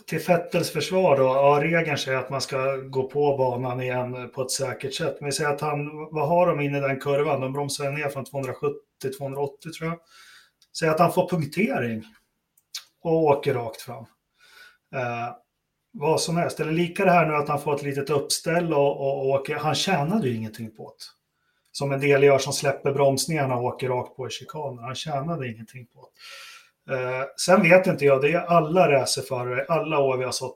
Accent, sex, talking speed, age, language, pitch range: native, male, 200 wpm, 30-49, Swedish, 130-165 Hz